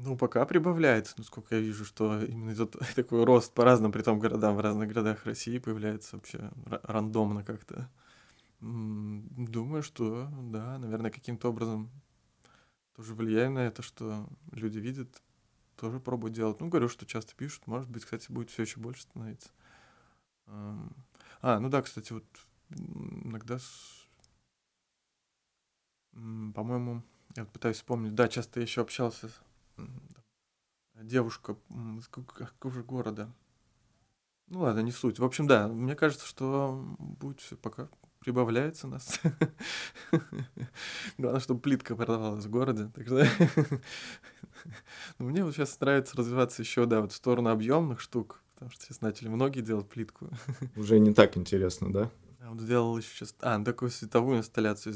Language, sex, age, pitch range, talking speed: Russian, male, 20-39, 110-130 Hz, 135 wpm